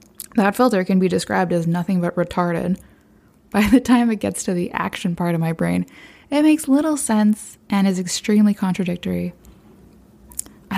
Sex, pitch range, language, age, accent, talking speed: female, 180-215 Hz, English, 20-39, American, 165 wpm